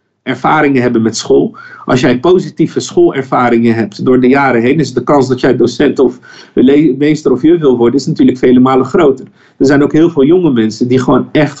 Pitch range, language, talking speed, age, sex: 125-165 Hz, English, 210 wpm, 50-69, male